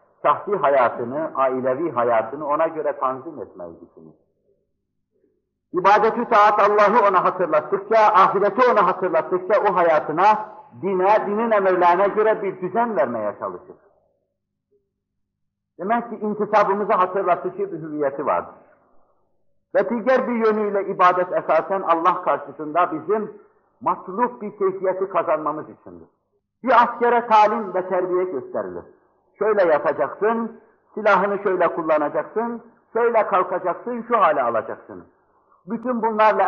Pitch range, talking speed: 180-225 Hz, 105 wpm